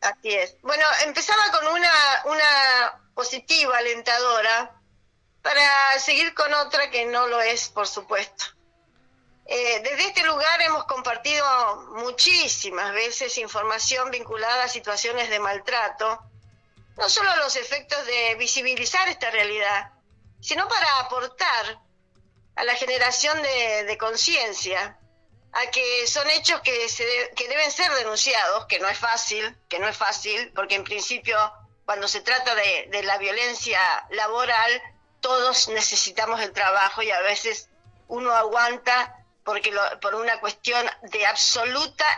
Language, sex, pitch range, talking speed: Spanish, female, 210-285 Hz, 140 wpm